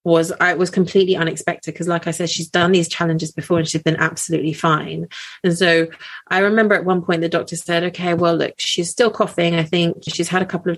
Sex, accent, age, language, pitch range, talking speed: female, British, 30-49, English, 160-180 Hz, 245 wpm